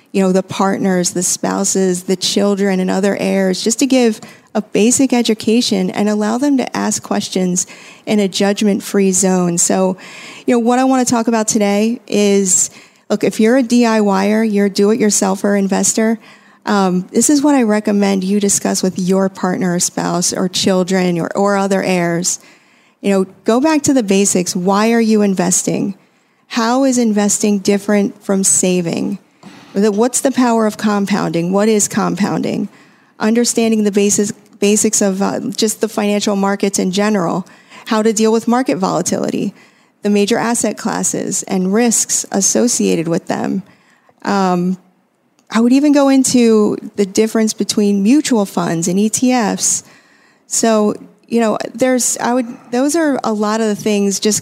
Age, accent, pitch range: 40-59, American, 195-230 Hz